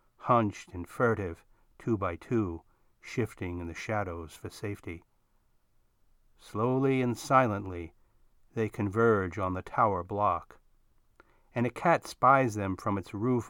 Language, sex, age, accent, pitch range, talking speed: English, male, 60-79, American, 95-115 Hz, 130 wpm